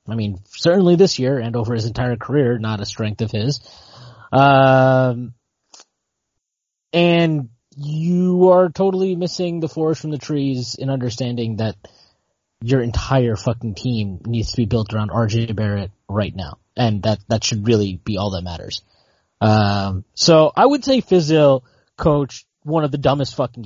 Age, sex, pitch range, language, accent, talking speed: 20-39, male, 110-145 Hz, English, American, 160 wpm